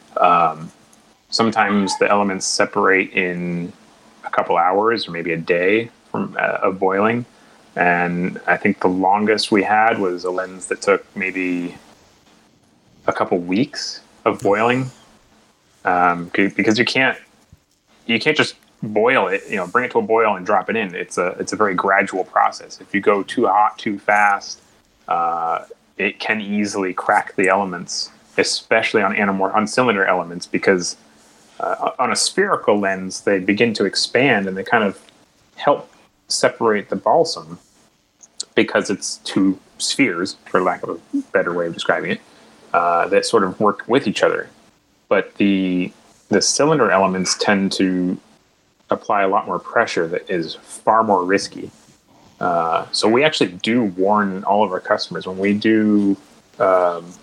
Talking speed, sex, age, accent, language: 160 wpm, male, 30-49, American, English